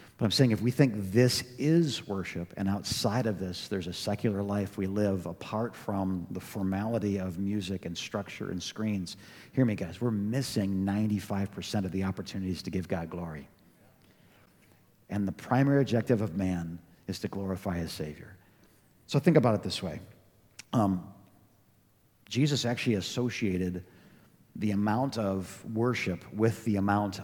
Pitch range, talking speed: 95-120 Hz, 150 wpm